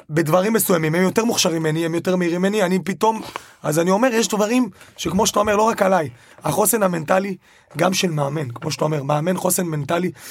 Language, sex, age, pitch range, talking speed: Hebrew, male, 30-49, 165-215 Hz, 200 wpm